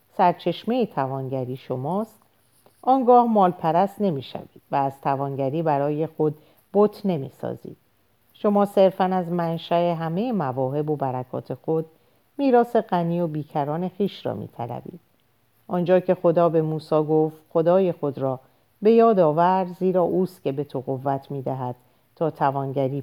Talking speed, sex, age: 140 wpm, female, 50-69